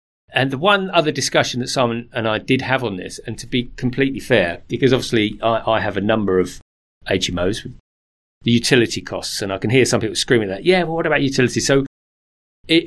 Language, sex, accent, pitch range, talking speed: English, male, British, 105-155 Hz, 210 wpm